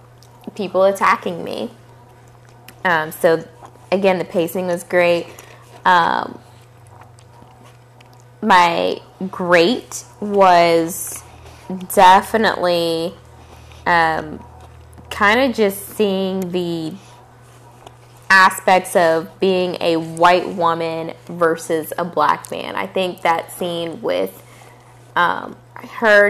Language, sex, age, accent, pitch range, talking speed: English, female, 20-39, American, 160-195 Hz, 85 wpm